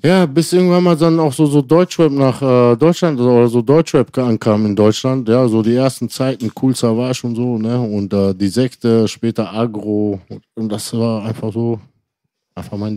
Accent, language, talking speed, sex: German, German, 205 wpm, male